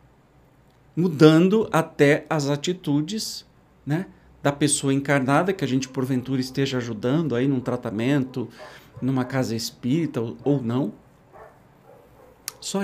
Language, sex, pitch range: Portuguese, male, 130-160 Hz